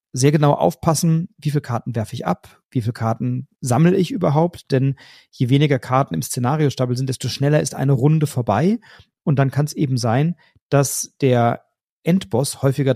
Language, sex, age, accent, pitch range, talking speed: German, male, 40-59, German, 125-155 Hz, 175 wpm